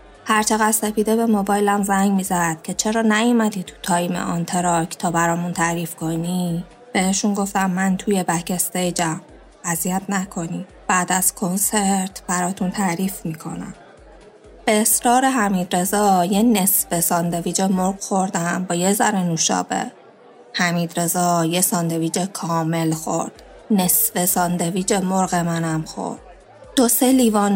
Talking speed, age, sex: 125 wpm, 20-39, female